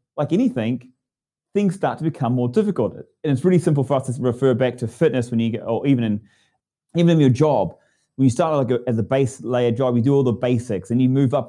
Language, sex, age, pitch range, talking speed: English, male, 30-49, 120-145 Hz, 250 wpm